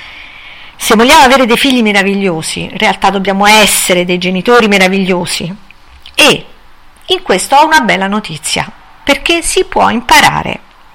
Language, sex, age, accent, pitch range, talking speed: Italian, female, 50-69, native, 185-235 Hz, 130 wpm